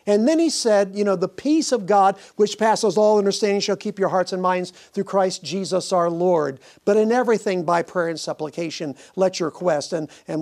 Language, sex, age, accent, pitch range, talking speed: English, male, 50-69, American, 175-210 Hz, 215 wpm